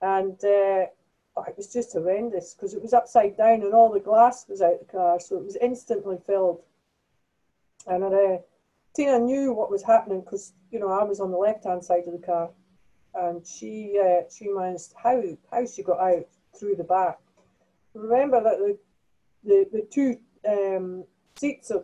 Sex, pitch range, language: female, 180-230 Hz, English